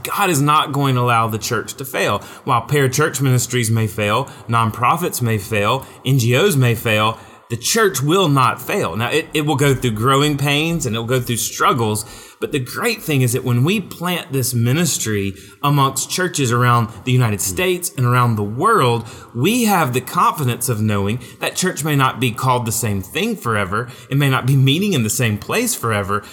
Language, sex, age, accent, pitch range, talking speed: English, male, 30-49, American, 120-160 Hz, 195 wpm